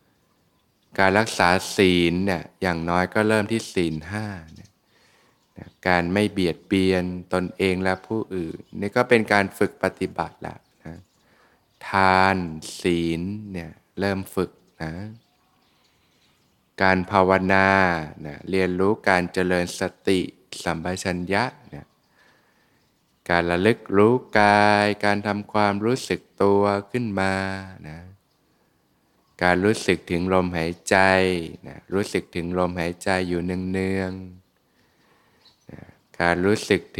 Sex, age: male, 20-39